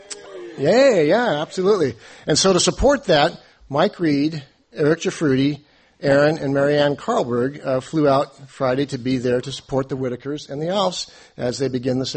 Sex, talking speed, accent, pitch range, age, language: male, 170 wpm, American, 130-160 Hz, 50-69, English